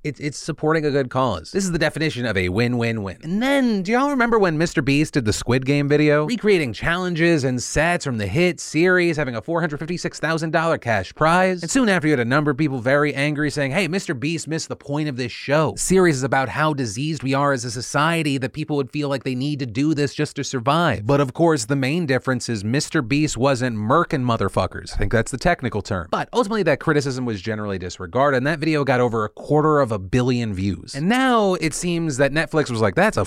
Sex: male